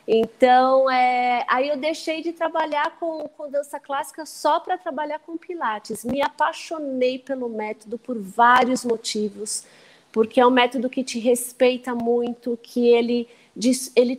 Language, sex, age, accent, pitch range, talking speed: Portuguese, female, 30-49, Brazilian, 240-290 Hz, 140 wpm